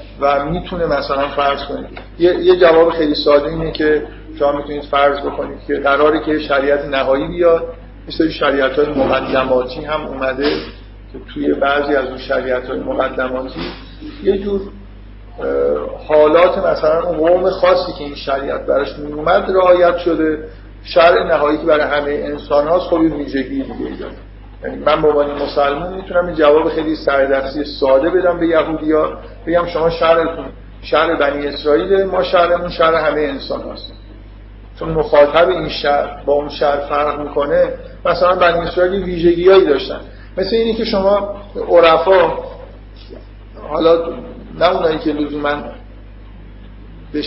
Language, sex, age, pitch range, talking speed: Persian, male, 50-69, 140-170 Hz, 135 wpm